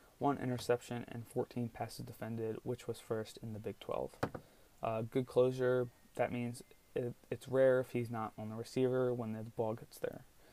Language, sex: English, male